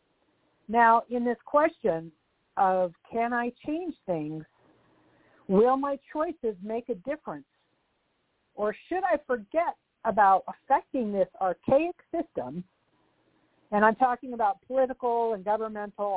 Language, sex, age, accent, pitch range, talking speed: English, female, 50-69, American, 215-300 Hz, 115 wpm